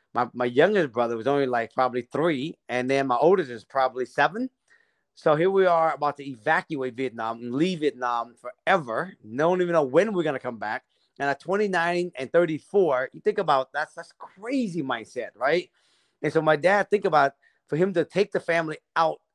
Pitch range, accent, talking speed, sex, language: 125-175 Hz, American, 200 wpm, male, English